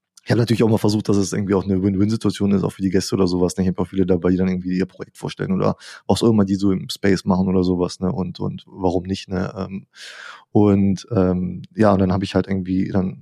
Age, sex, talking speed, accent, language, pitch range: 20-39, male, 260 wpm, German, German, 100-115 Hz